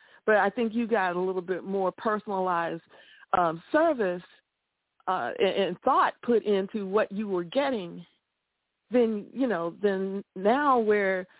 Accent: American